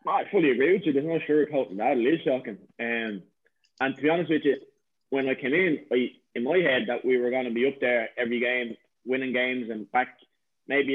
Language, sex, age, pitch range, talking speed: English, male, 20-39, 120-140 Hz, 250 wpm